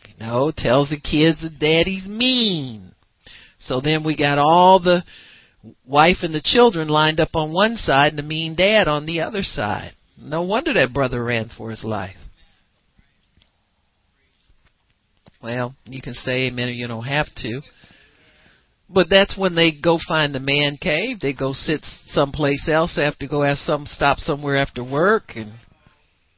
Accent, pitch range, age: American, 140-195 Hz, 50-69